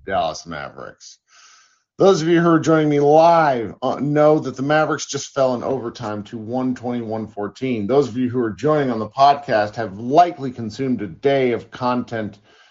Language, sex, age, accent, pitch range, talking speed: English, male, 40-59, American, 125-170 Hz, 190 wpm